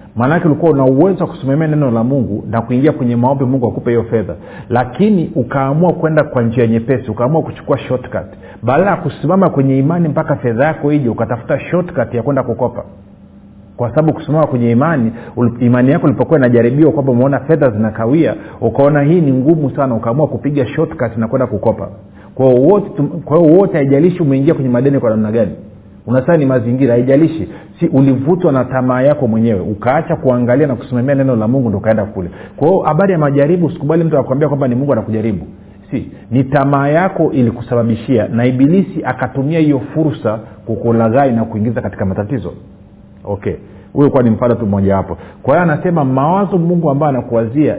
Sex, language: male, Swahili